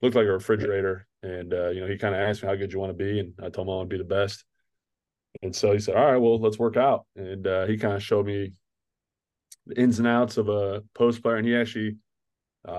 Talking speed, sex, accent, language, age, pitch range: 265 wpm, male, American, English, 20-39, 95-105 Hz